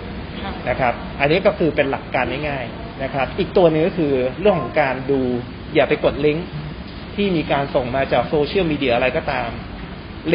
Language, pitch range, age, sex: Thai, 130-165 Hz, 20-39, male